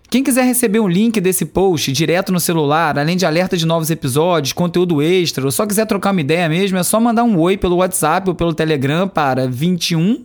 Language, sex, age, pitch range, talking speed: Portuguese, male, 20-39, 160-200 Hz, 215 wpm